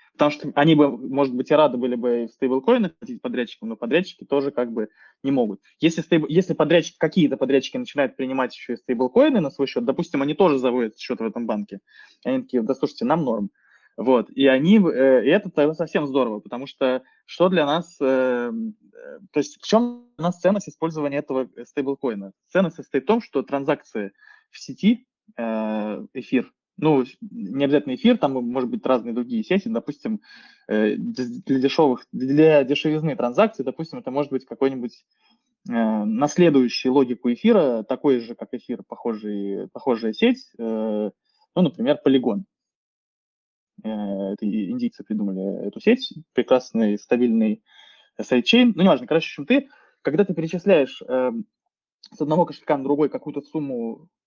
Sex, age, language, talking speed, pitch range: male, 20-39, Russian, 155 wpm, 125-200 Hz